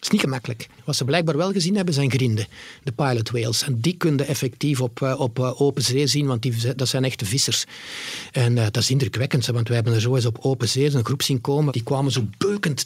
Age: 50-69